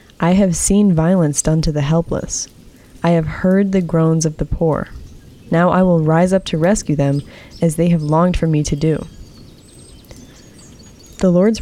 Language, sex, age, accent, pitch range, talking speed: English, female, 20-39, American, 160-195 Hz, 175 wpm